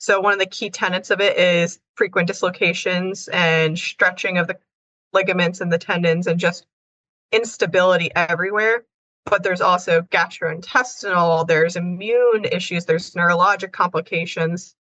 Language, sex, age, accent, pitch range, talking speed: English, female, 20-39, American, 165-200 Hz, 130 wpm